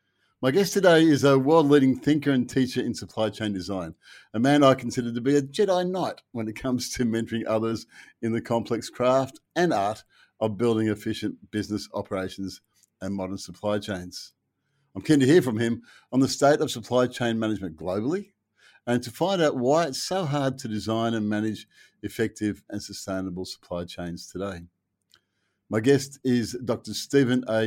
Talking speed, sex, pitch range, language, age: 175 wpm, male, 105-130 Hz, English, 50-69